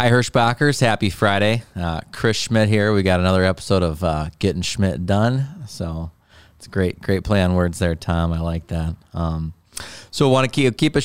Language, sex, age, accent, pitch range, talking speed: English, male, 30-49, American, 85-105 Hz, 200 wpm